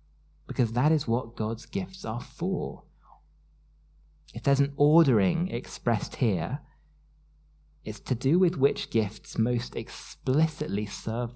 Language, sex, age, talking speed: English, male, 30-49, 120 wpm